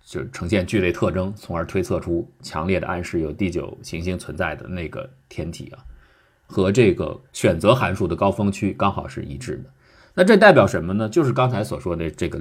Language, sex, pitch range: Chinese, male, 90-125 Hz